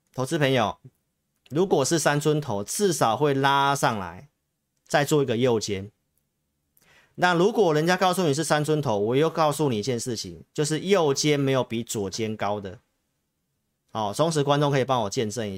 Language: Chinese